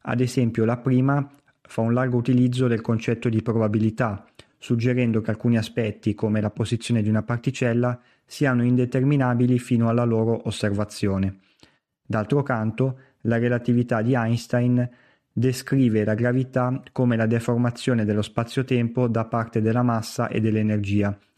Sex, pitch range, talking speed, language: male, 110-125 Hz, 135 wpm, Italian